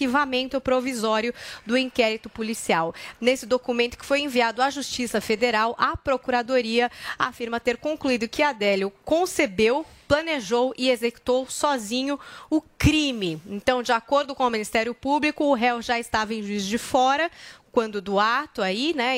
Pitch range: 230-275 Hz